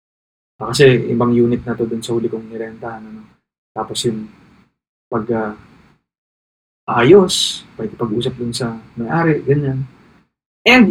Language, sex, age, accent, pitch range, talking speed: Filipino, male, 20-39, native, 115-140 Hz, 125 wpm